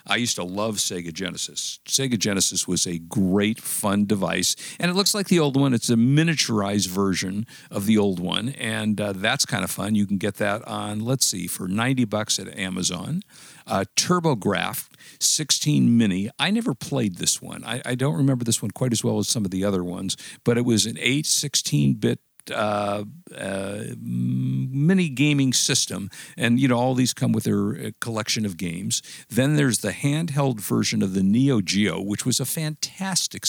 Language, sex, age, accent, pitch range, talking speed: English, male, 50-69, American, 100-135 Hz, 185 wpm